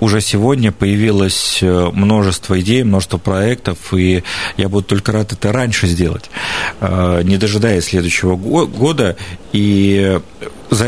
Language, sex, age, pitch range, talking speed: Russian, male, 40-59, 95-115 Hz, 115 wpm